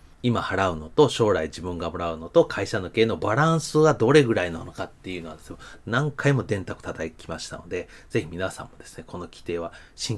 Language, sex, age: Japanese, male, 30-49